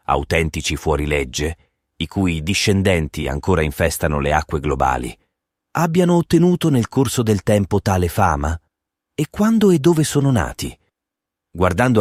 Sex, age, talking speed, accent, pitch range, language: male, 30-49, 125 wpm, native, 80-100 Hz, Italian